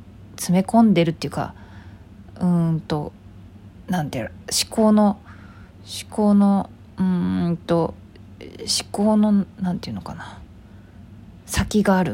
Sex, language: female, Japanese